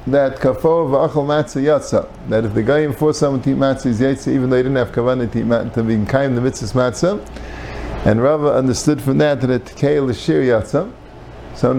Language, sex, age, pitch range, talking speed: English, male, 50-69, 125-160 Hz, 205 wpm